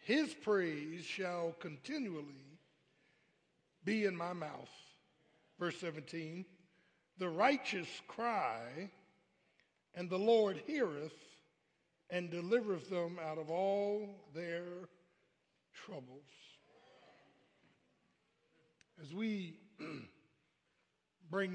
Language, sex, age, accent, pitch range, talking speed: English, male, 60-79, American, 155-185 Hz, 80 wpm